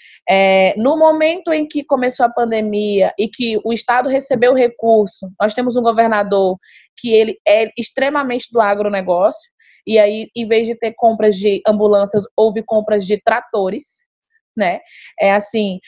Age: 20-39